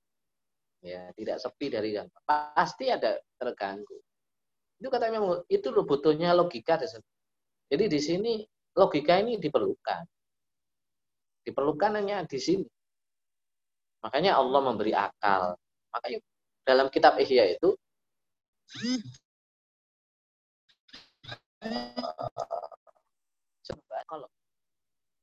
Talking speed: 80 wpm